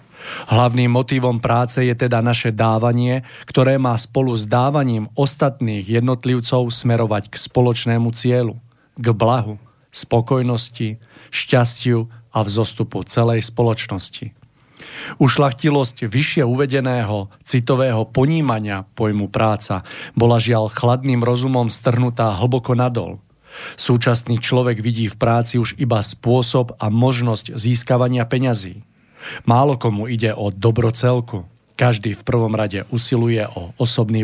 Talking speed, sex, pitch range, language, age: 115 wpm, male, 110-125 Hz, Slovak, 40-59